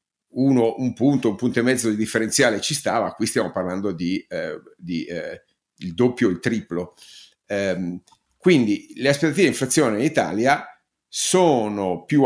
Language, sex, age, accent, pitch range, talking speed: Italian, male, 50-69, native, 95-115 Hz, 155 wpm